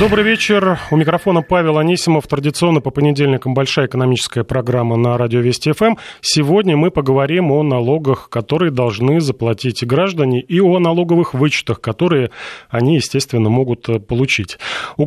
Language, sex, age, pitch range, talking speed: Russian, male, 30-49, 125-160 Hz, 140 wpm